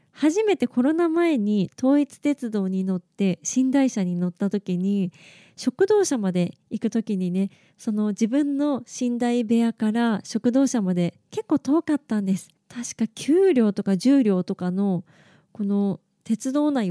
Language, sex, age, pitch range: Japanese, female, 20-39, 195-280 Hz